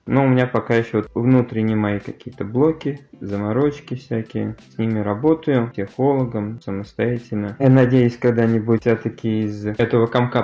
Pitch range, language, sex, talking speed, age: 105-125 Hz, Russian, male, 130 wpm, 20-39